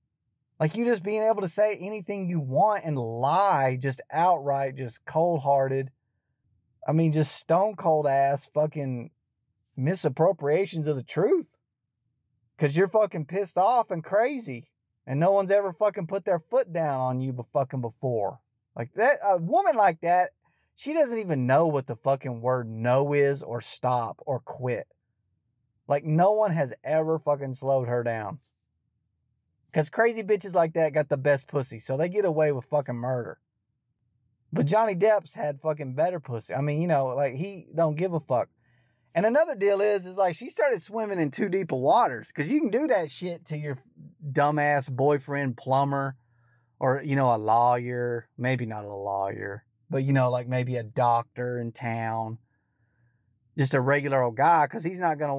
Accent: American